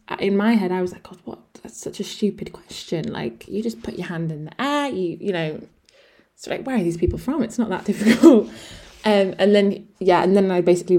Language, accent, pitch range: English, British, 165-215 Hz